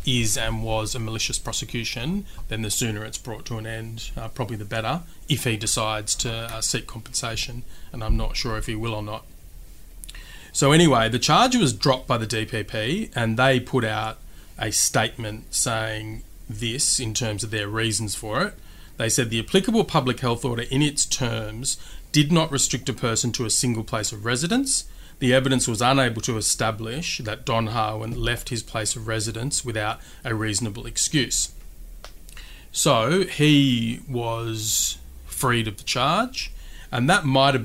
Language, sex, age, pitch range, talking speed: English, male, 30-49, 110-125 Hz, 170 wpm